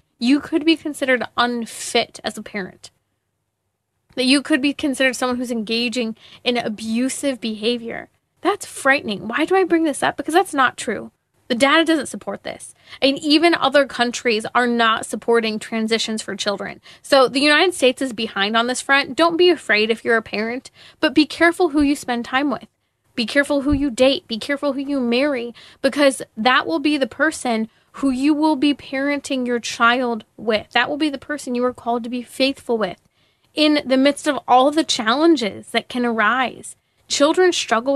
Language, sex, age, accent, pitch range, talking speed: English, female, 20-39, American, 230-285 Hz, 185 wpm